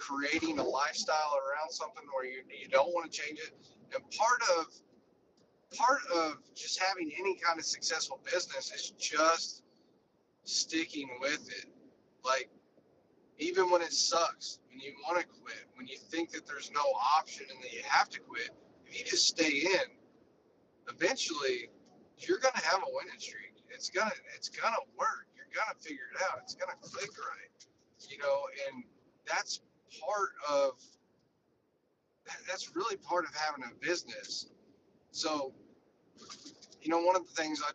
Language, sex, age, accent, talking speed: English, male, 30-49, American, 160 wpm